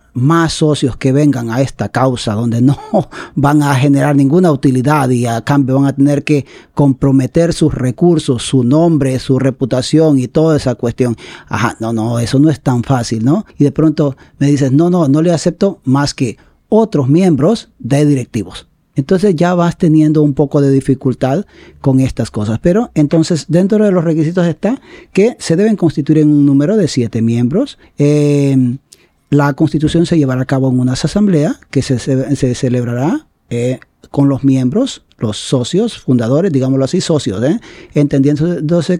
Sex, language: male, Spanish